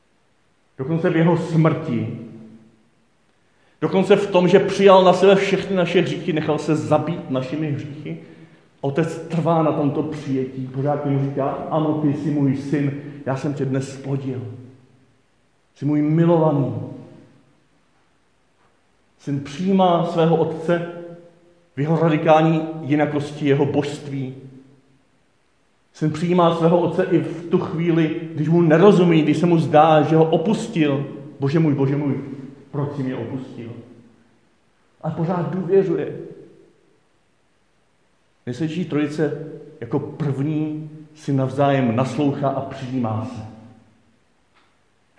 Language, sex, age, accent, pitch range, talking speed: Czech, male, 40-59, native, 135-170 Hz, 120 wpm